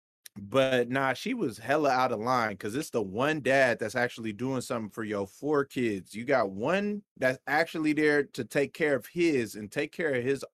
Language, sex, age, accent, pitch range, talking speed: English, male, 20-39, American, 120-160 Hz, 210 wpm